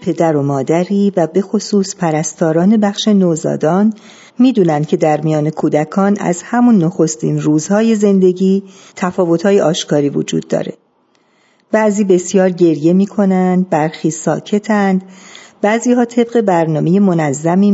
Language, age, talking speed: Persian, 50-69, 115 wpm